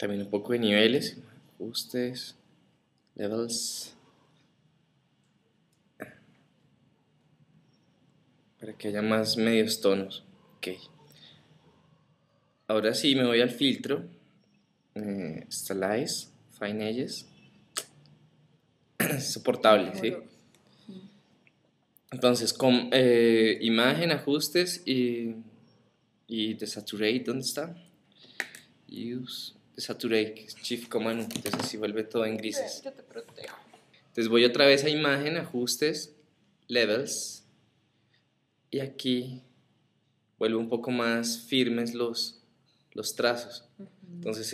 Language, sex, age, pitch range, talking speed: Spanish, male, 20-39, 110-140 Hz, 90 wpm